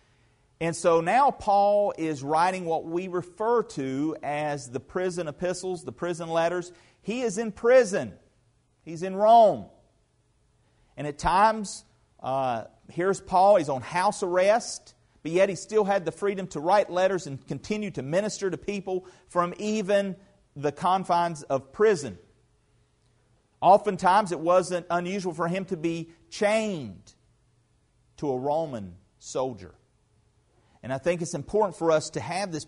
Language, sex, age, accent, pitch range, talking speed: English, male, 40-59, American, 120-190 Hz, 145 wpm